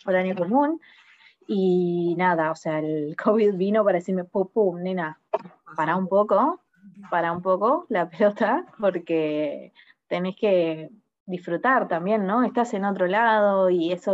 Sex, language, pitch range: female, Spanish, 175-210 Hz